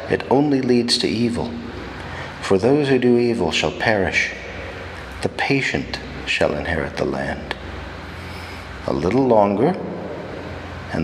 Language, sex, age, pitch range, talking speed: English, male, 50-69, 85-100 Hz, 120 wpm